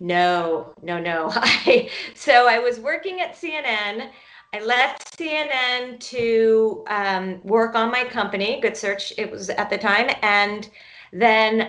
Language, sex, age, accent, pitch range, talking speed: English, female, 30-49, American, 195-245 Hz, 140 wpm